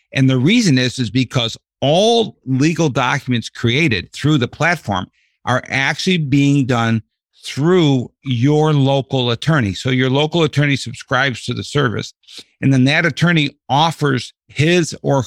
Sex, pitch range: male, 120-155 Hz